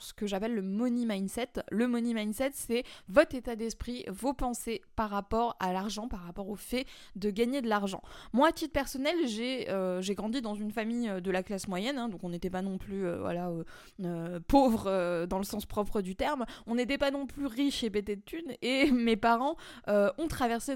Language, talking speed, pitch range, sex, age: French, 225 wpm, 195-250 Hz, female, 20-39